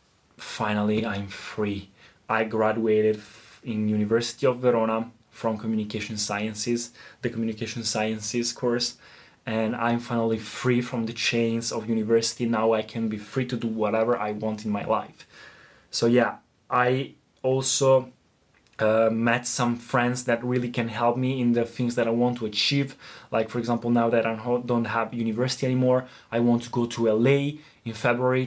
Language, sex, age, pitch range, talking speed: Italian, male, 20-39, 115-130 Hz, 160 wpm